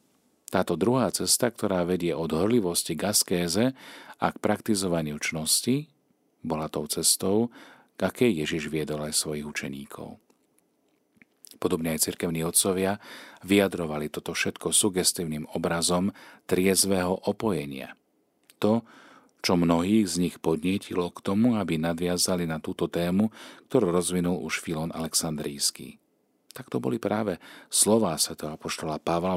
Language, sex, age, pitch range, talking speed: Slovak, male, 40-59, 80-100 Hz, 115 wpm